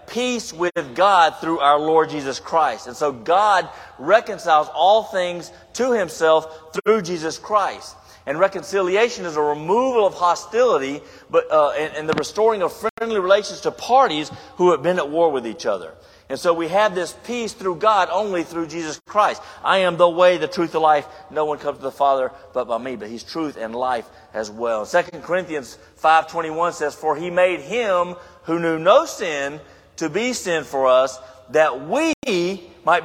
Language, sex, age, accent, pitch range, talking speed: English, male, 40-59, American, 150-190 Hz, 185 wpm